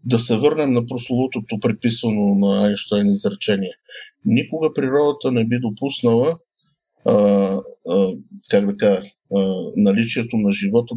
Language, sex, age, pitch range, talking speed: Bulgarian, male, 50-69, 110-150 Hz, 120 wpm